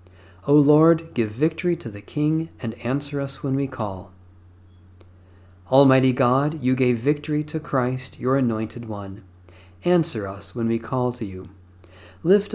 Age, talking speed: 50-69, 150 wpm